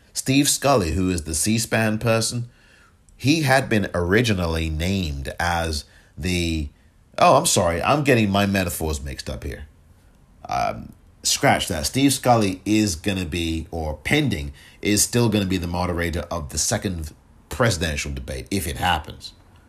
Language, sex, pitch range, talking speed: English, male, 80-105 Hz, 150 wpm